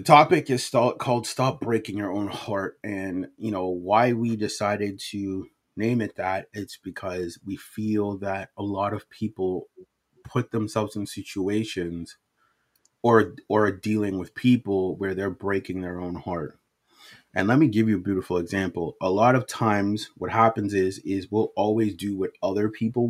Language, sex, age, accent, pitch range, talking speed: English, male, 30-49, American, 95-115 Hz, 170 wpm